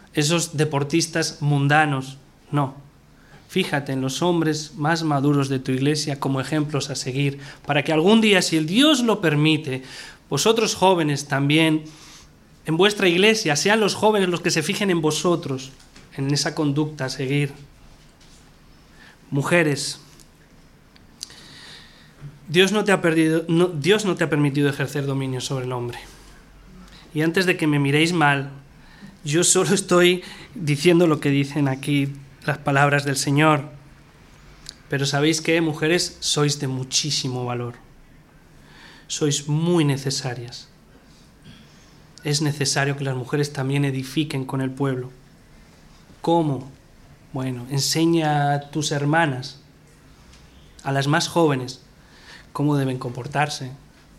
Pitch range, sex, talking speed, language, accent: 135-165 Hz, male, 130 wpm, Spanish, Spanish